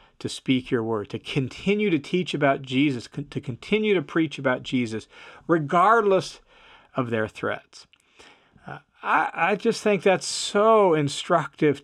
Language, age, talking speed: English, 40-59, 140 wpm